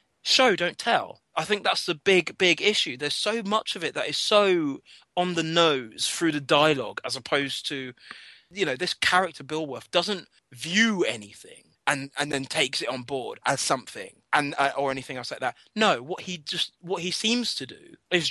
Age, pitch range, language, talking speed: 20-39, 145-210 Hz, English, 200 wpm